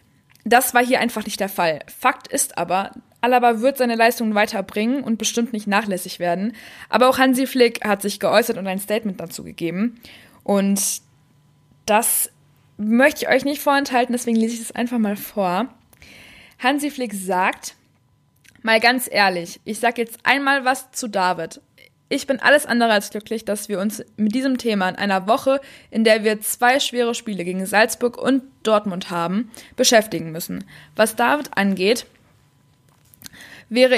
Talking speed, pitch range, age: 160 wpm, 195-245 Hz, 20-39